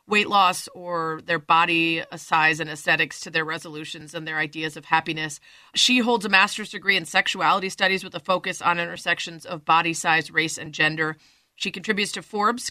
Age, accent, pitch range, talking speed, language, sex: 30-49, American, 170-210 Hz, 185 wpm, English, female